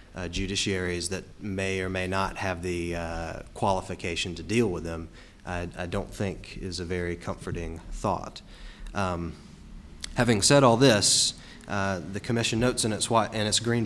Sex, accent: male, American